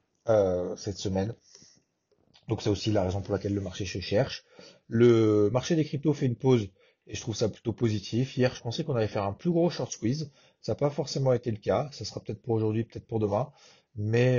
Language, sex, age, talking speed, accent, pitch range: French, male, 30-49, 225 wpm, French, 100-115 Hz